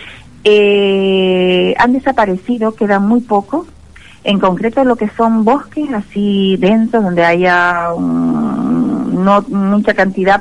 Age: 40-59